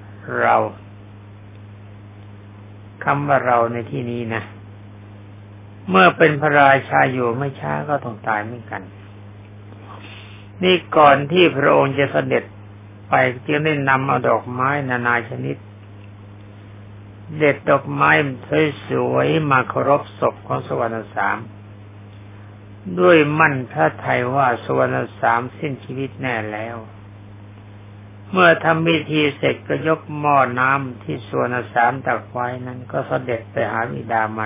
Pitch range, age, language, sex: 100-135 Hz, 60-79, Thai, male